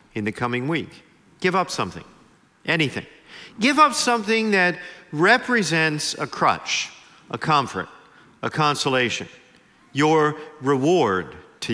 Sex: male